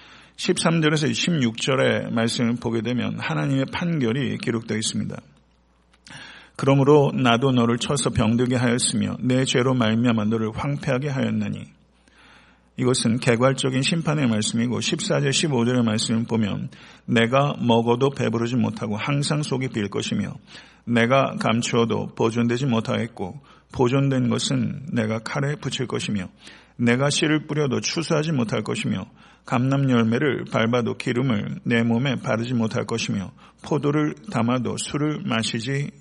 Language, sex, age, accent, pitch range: Korean, male, 50-69, native, 115-140 Hz